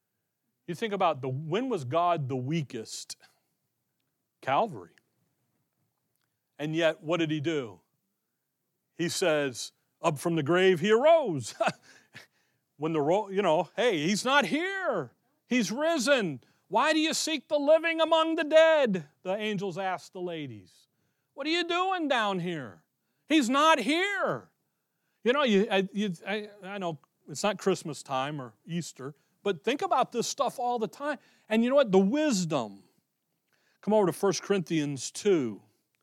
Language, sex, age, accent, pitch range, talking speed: English, male, 40-59, American, 160-230 Hz, 155 wpm